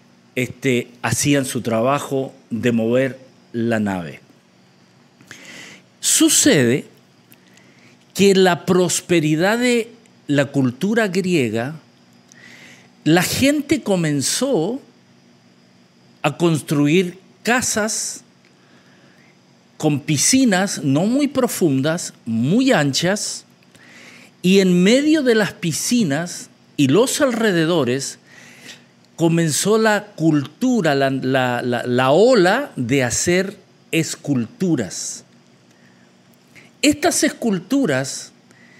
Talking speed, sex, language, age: 80 wpm, male, English, 50-69